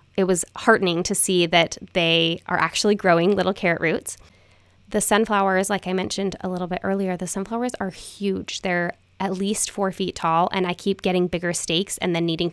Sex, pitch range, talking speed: female, 170-200 Hz, 195 wpm